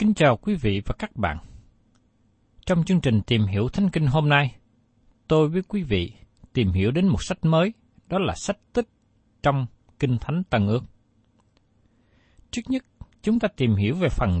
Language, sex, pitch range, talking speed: Vietnamese, male, 110-175 Hz, 180 wpm